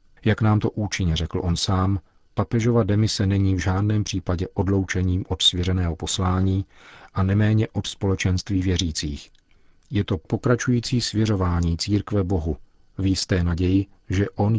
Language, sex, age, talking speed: Czech, male, 40-59, 135 wpm